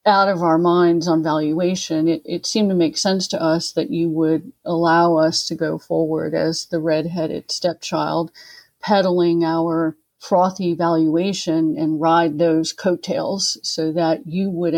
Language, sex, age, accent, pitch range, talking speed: English, female, 50-69, American, 165-185 Hz, 155 wpm